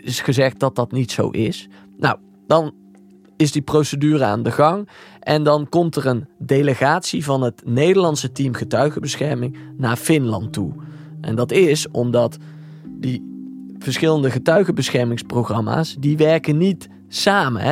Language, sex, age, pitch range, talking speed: Dutch, male, 20-39, 120-155 Hz, 135 wpm